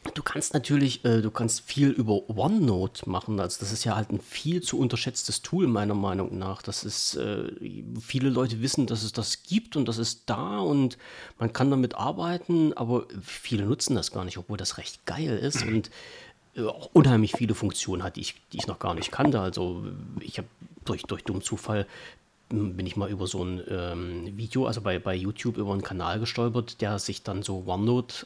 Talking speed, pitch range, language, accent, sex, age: 205 wpm, 100-125 Hz, German, German, male, 40-59